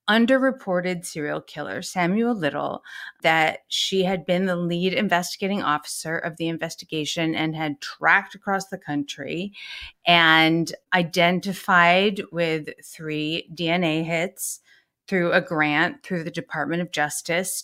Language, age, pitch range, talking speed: English, 30-49, 160-205 Hz, 120 wpm